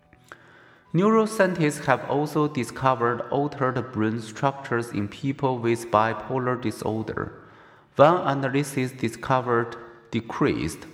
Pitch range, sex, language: 115-150 Hz, male, Chinese